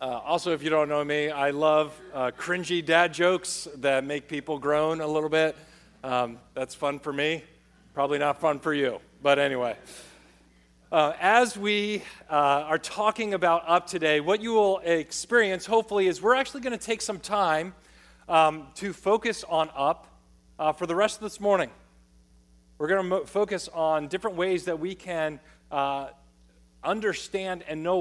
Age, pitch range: 40-59, 140-190 Hz